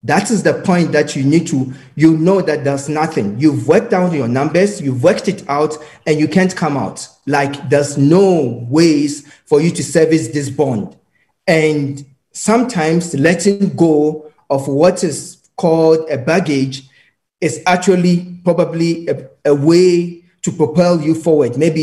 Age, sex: 40-59, male